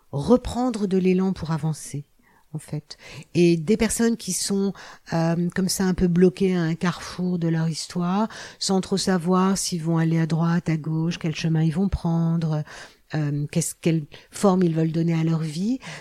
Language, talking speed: French, 185 wpm